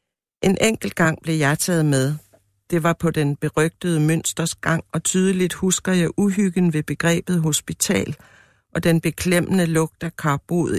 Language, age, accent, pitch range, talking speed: Danish, 60-79, native, 145-175 Hz, 150 wpm